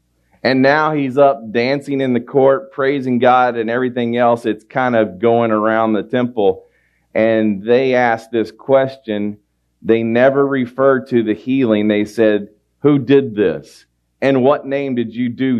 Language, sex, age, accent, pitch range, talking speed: English, male, 40-59, American, 85-120 Hz, 160 wpm